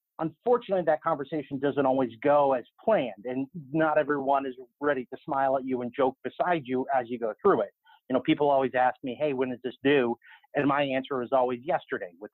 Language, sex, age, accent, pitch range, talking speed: English, male, 30-49, American, 130-170 Hz, 215 wpm